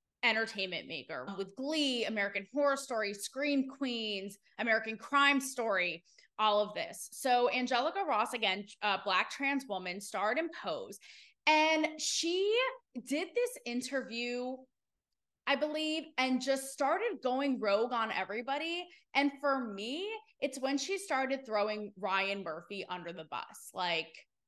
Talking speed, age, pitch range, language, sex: 130 wpm, 20-39, 205-275 Hz, English, female